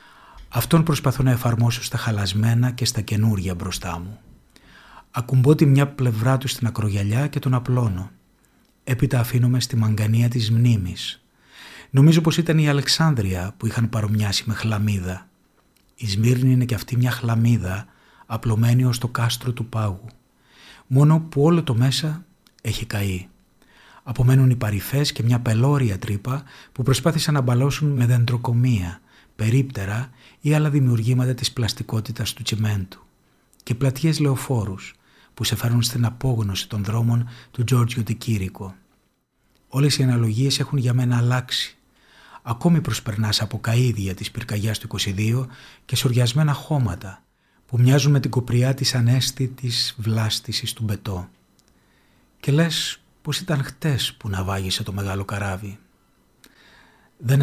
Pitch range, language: 110-130 Hz, Greek